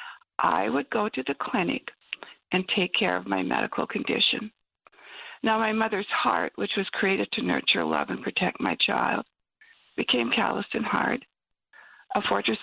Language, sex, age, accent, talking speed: English, female, 60-79, American, 155 wpm